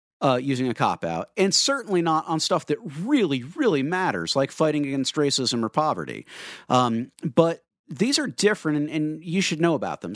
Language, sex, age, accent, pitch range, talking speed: English, male, 50-69, American, 140-190 Hz, 190 wpm